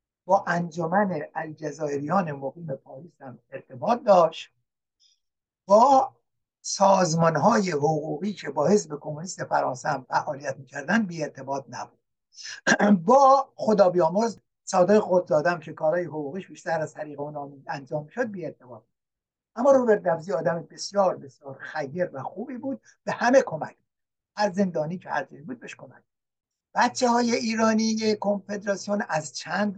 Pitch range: 155-205 Hz